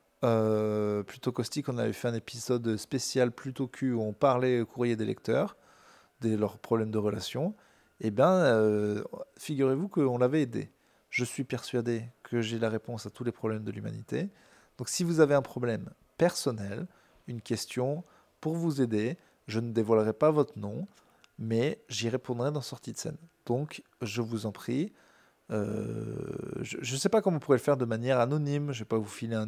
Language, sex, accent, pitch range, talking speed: French, male, French, 110-140 Hz, 190 wpm